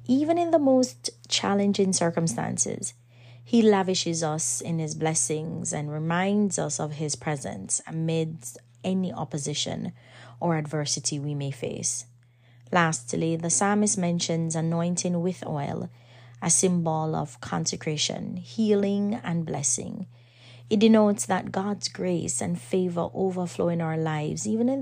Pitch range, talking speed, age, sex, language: 145-190 Hz, 130 wpm, 30-49, female, English